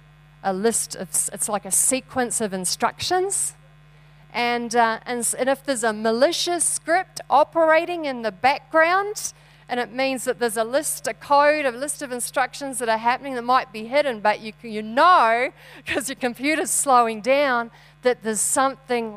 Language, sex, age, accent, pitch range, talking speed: English, female, 40-59, Australian, 185-260 Hz, 170 wpm